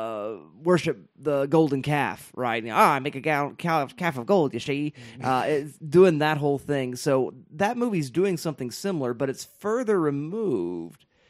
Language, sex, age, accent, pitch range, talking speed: English, male, 30-49, American, 120-160 Hz, 185 wpm